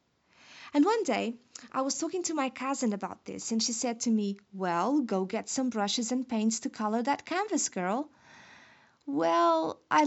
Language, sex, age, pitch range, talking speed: English, female, 20-39, 220-280 Hz, 180 wpm